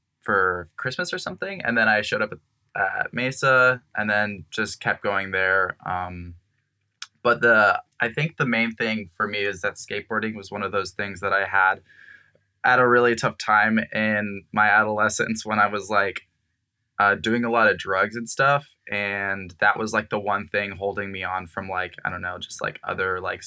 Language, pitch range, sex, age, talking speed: English, 95-115 Hz, male, 10-29, 200 wpm